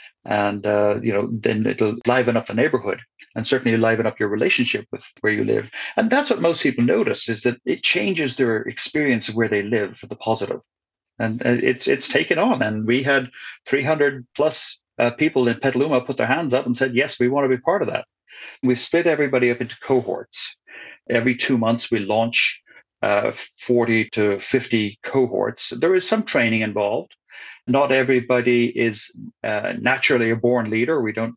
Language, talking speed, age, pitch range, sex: English, 185 wpm, 40-59, 115-135 Hz, male